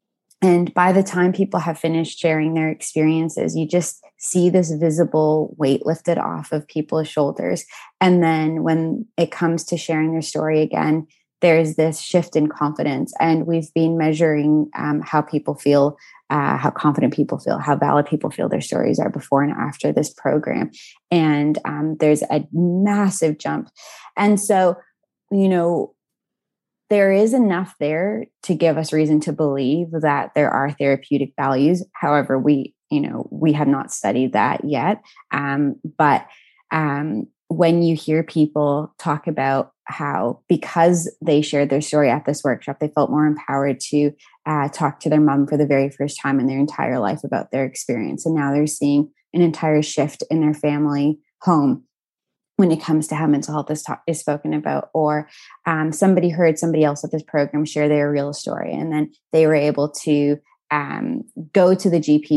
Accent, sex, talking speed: American, female, 175 wpm